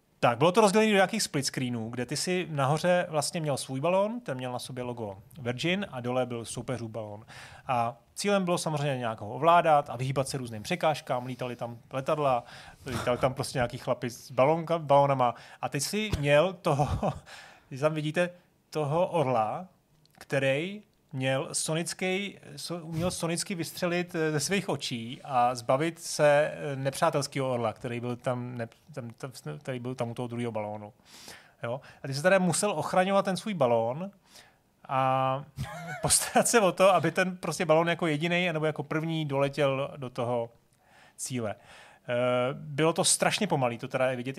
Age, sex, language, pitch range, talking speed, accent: 30-49, male, Czech, 125-165 Hz, 165 wpm, native